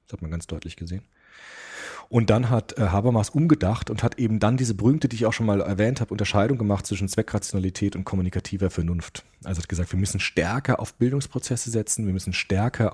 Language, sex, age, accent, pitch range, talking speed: German, male, 40-59, German, 90-120 Hz, 200 wpm